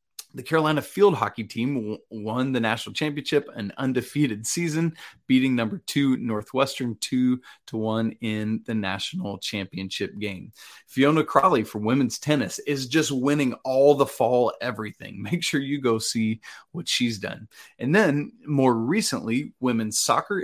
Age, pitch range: 30-49, 110-135 Hz